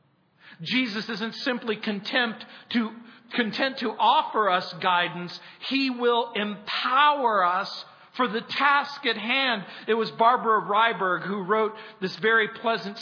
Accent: American